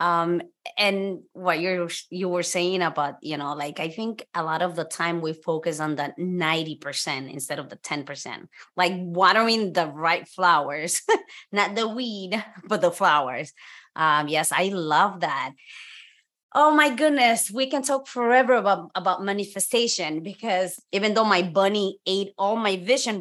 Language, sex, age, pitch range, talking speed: English, female, 20-39, 175-245 Hz, 160 wpm